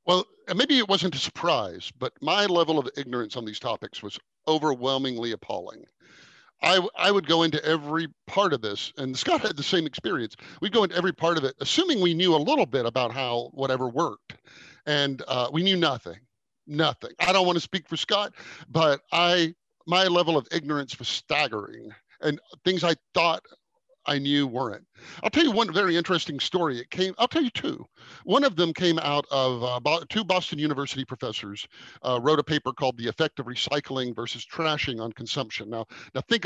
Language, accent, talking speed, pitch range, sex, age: English, American, 195 wpm, 130-175 Hz, male, 50-69